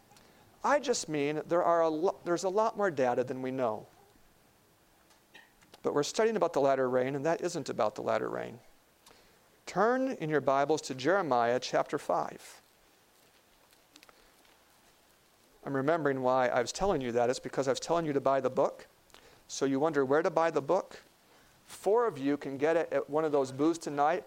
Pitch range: 130-160 Hz